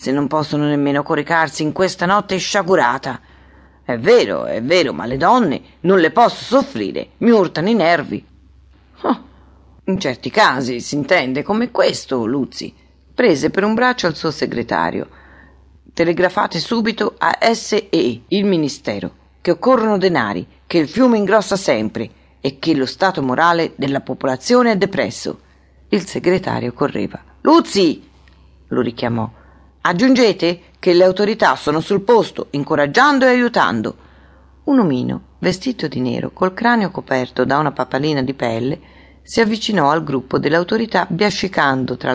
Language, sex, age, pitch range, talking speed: Italian, female, 40-59, 125-190 Hz, 140 wpm